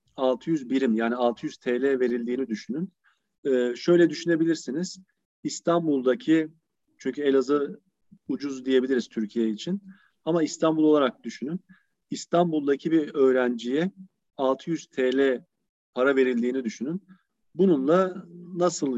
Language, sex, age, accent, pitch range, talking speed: Turkish, male, 40-59, native, 130-170 Hz, 100 wpm